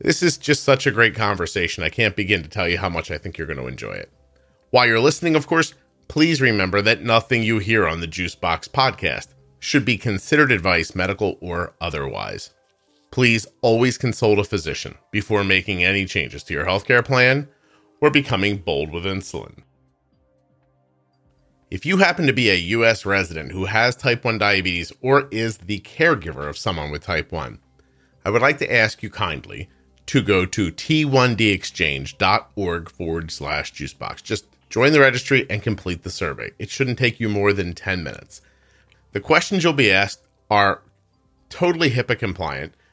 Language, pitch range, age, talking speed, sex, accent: English, 85-125 Hz, 40-59, 175 wpm, male, American